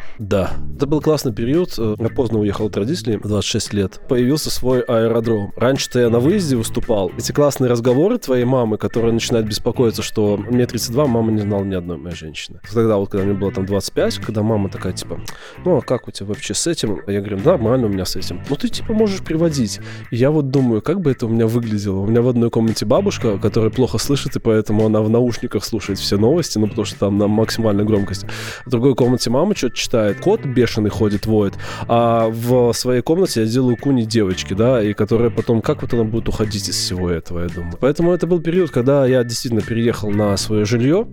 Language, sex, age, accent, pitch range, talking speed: Russian, male, 20-39, native, 105-125 Hz, 215 wpm